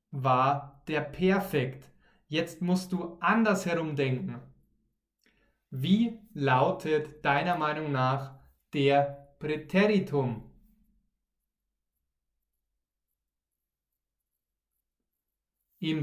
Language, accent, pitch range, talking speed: German, German, 130-180 Hz, 60 wpm